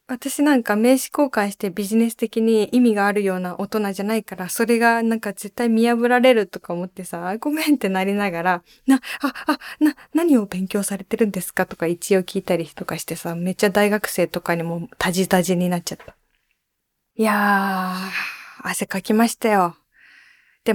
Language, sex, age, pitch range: Japanese, female, 20-39, 190-260 Hz